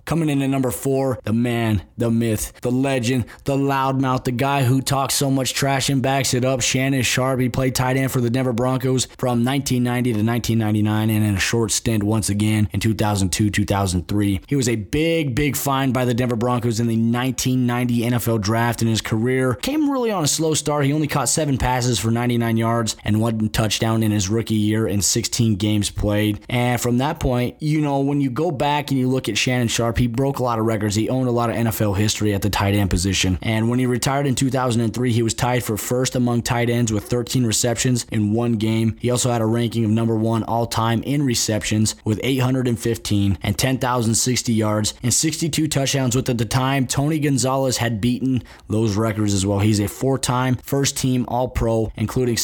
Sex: male